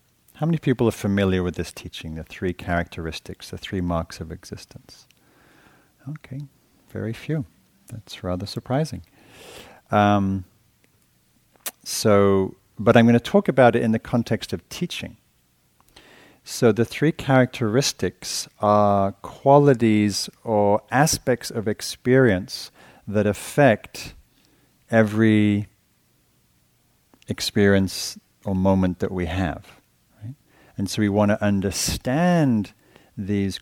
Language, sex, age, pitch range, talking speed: English, male, 40-59, 90-120 Hz, 110 wpm